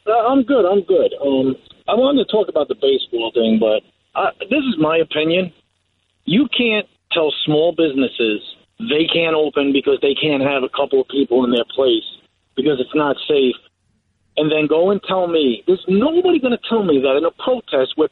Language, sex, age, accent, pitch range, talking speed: English, male, 40-59, American, 155-245 Hz, 190 wpm